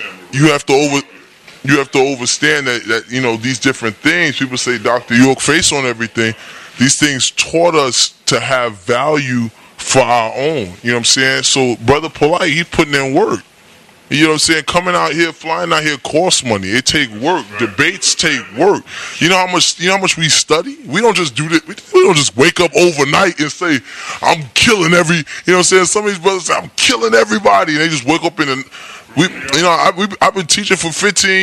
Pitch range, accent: 130-180 Hz, American